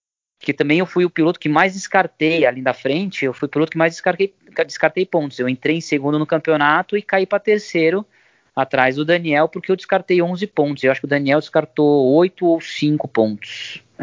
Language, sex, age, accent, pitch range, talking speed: Portuguese, male, 20-39, Brazilian, 130-170 Hz, 215 wpm